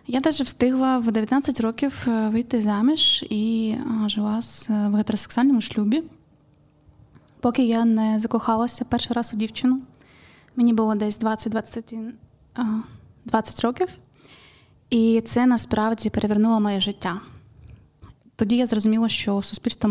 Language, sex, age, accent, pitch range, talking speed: Ukrainian, female, 20-39, native, 210-235 Hz, 120 wpm